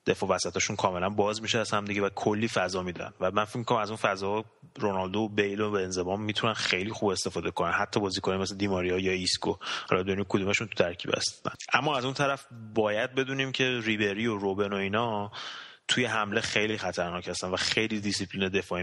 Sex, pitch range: male, 95-115 Hz